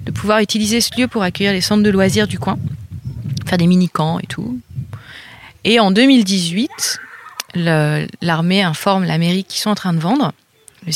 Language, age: French, 30-49